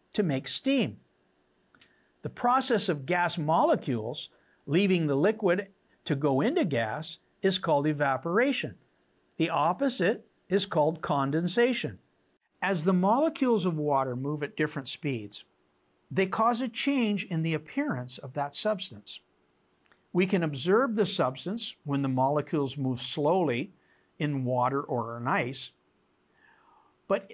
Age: 60-79